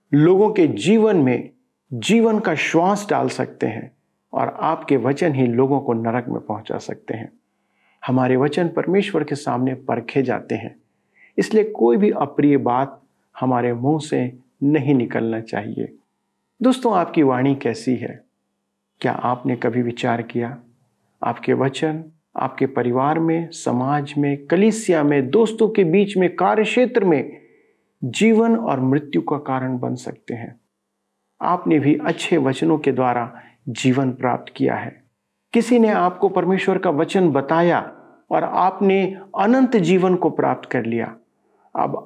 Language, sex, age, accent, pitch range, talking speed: Hindi, male, 50-69, native, 130-195 Hz, 140 wpm